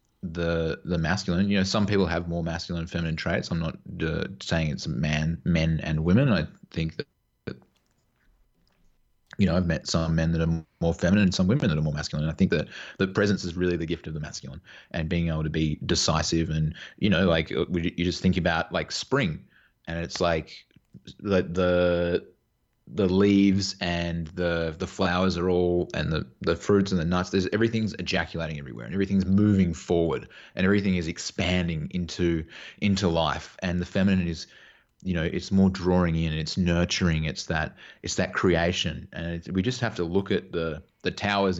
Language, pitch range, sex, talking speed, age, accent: English, 80-95 Hz, male, 195 wpm, 20-39, Australian